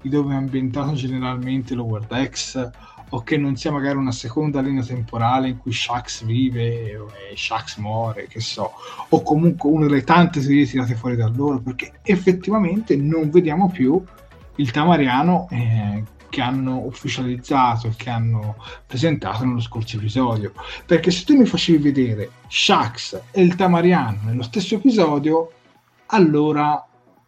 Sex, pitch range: male, 120-160 Hz